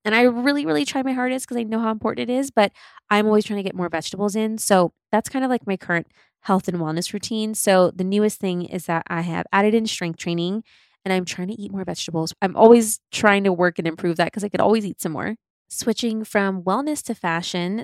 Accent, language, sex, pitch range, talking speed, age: American, English, female, 170-220 Hz, 245 wpm, 20-39